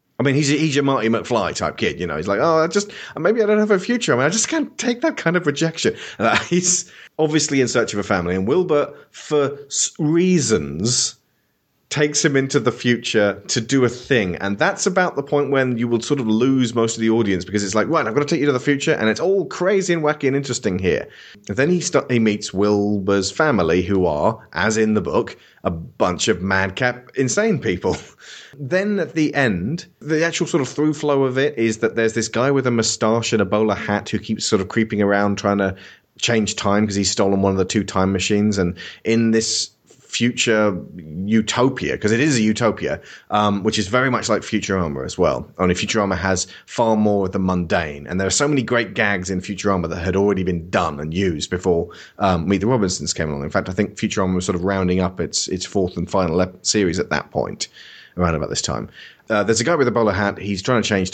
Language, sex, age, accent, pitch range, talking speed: English, male, 30-49, British, 95-135 Hz, 235 wpm